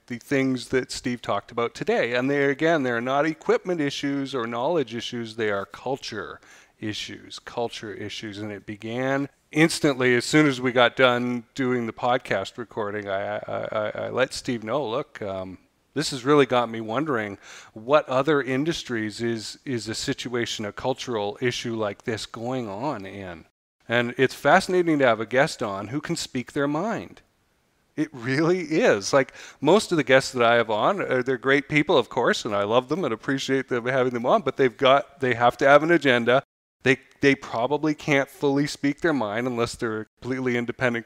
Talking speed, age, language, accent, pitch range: 185 wpm, 40-59, English, American, 115-145 Hz